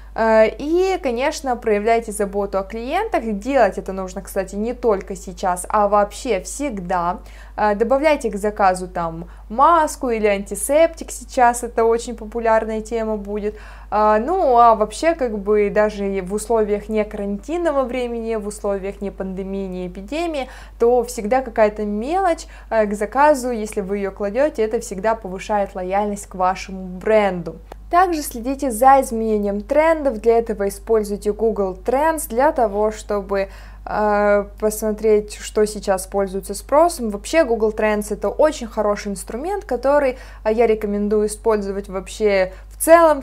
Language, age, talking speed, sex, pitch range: Russian, 20-39, 135 wpm, female, 200-250 Hz